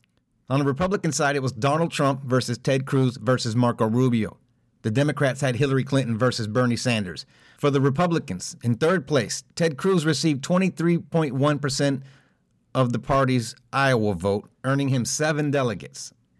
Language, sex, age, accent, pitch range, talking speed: English, male, 50-69, American, 120-145 Hz, 150 wpm